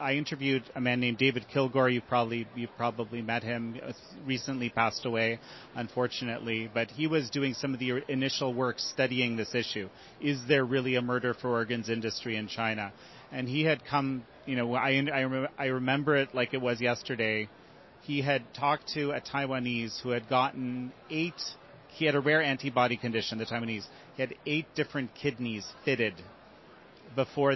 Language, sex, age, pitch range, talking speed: English, male, 30-49, 120-135 Hz, 170 wpm